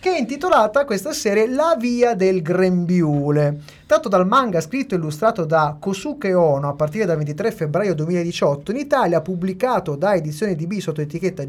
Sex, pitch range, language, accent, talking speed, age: male, 165-235 Hz, Italian, native, 165 wpm, 30-49